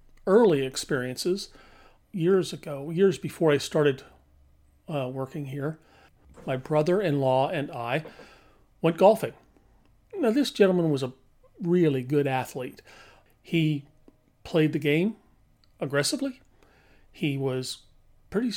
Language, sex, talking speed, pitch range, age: English, male, 105 wpm, 135-175 Hz, 40-59